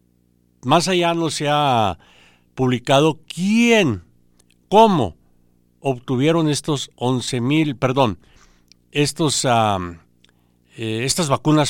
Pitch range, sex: 90-145 Hz, male